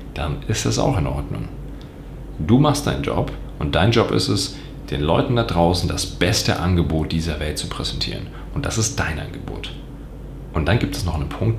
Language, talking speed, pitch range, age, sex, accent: German, 195 wpm, 85-115 Hz, 40-59, male, German